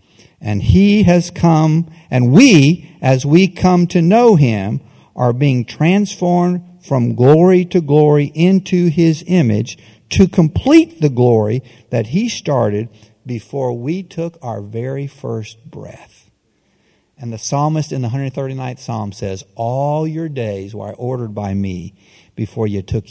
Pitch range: 120-195 Hz